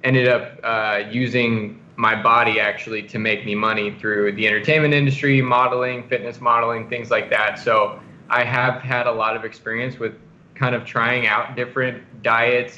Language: English